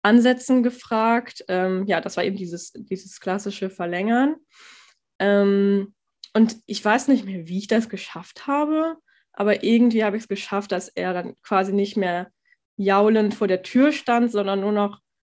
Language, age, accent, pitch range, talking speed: German, 10-29, German, 195-235 Hz, 165 wpm